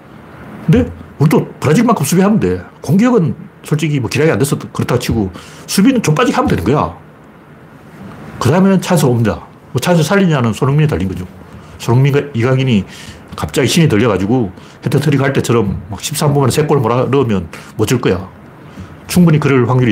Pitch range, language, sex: 110-170 Hz, Korean, male